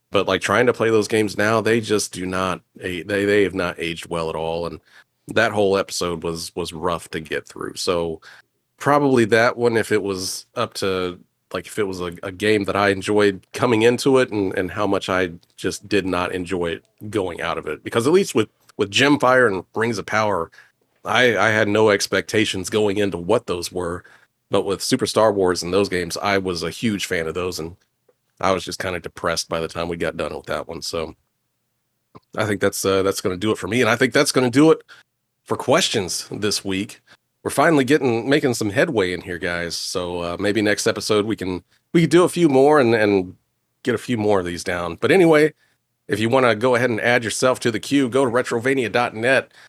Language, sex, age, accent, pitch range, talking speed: English, male, 30-49, American, 95-120 Hz, 225 wpm